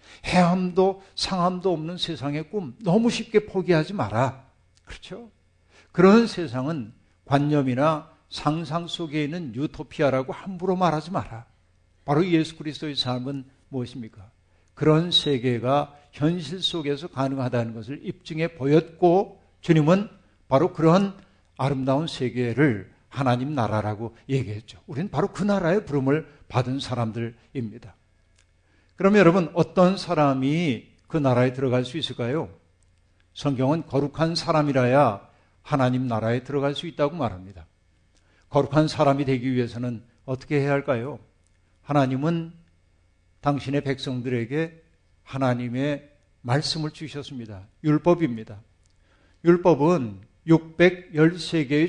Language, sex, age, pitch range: Korean, male, 60-79, 115-160 Hz